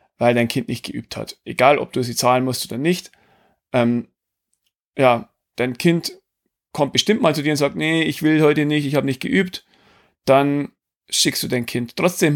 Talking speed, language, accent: 195 wpm, German, German